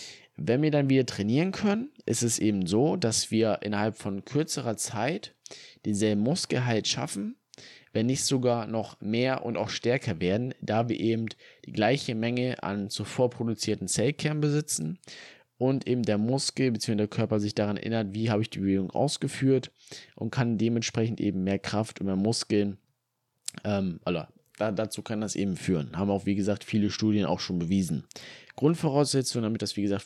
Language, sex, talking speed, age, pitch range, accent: German, male, 170 wpm, 20-39, 100-125 Hz, German